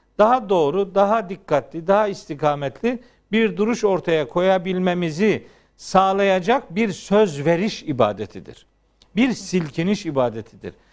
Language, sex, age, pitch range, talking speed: Turkish, male, 50-69, 170-220 Hz, 100 wpm